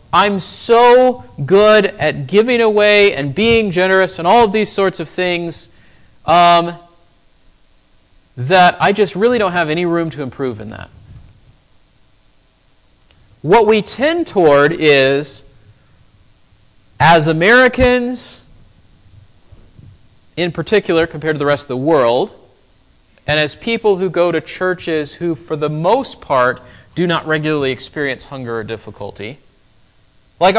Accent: American